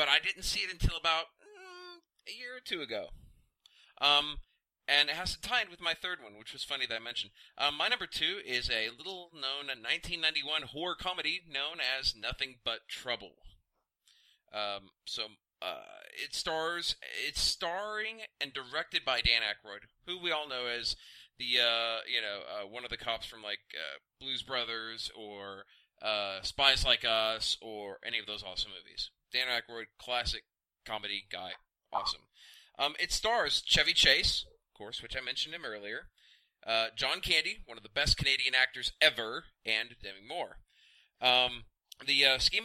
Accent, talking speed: American, 170 wpm